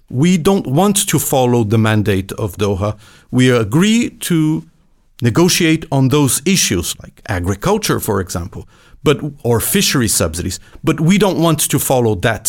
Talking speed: 145 wpm